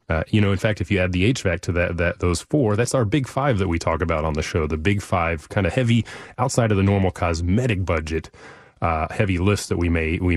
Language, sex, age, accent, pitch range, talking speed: English, male, 30-49, American, 85-105 Hz, 260 wpm